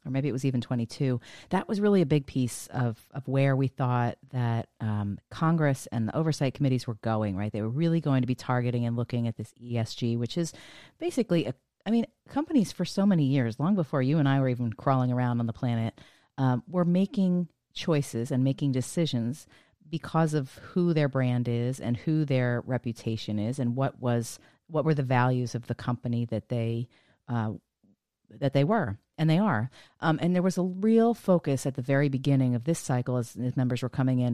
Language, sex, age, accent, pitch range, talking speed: English, female, 40-59, American, 120-155 Hz, 210 wpm